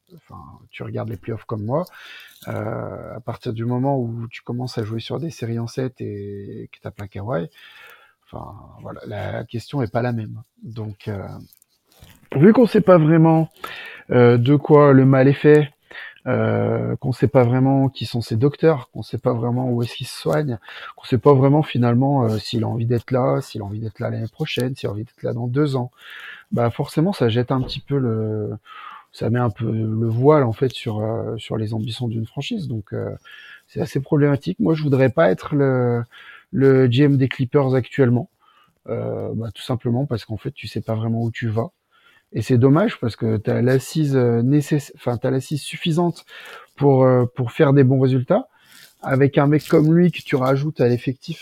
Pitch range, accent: 115-140 Hz, French